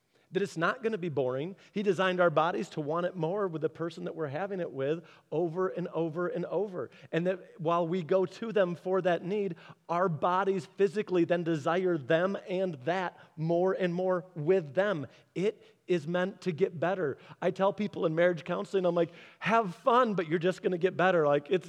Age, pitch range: 40-59, 165-200 Hz